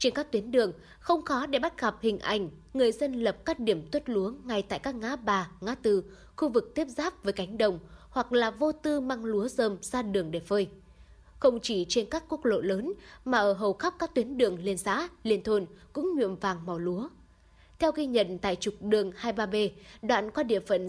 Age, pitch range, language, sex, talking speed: 20-39, 195-260 Hz, Vietnamese, female, 220 wpm